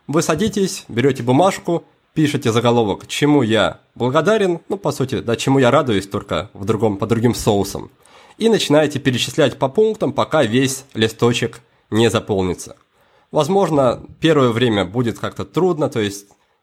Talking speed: 135 wpm